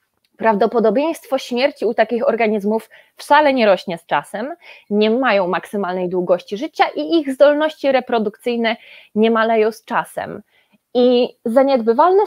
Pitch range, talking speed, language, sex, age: 200-255 Hz, 120 wpm, Polish, female, 20-39